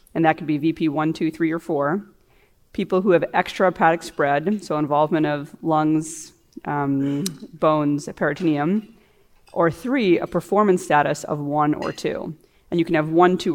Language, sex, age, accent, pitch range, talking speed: English, female, 30-49, American, 150-180 Hz, 170 wpm